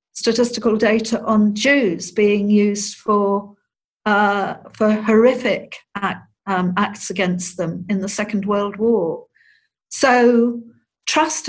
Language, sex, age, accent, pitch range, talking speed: English, female, 60-79, British, 200-250 Hz, 115 wpm